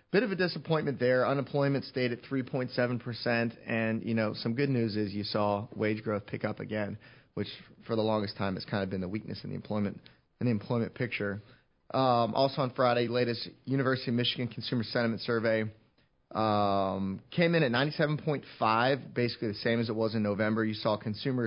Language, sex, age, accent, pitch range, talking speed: English, male, 30-49, American, 110-130 Hz, 190 wpm